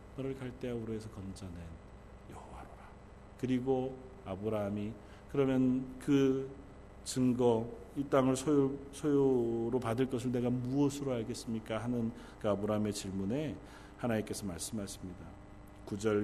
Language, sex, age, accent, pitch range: Korean, male, 40-59, native, 100-130 Hz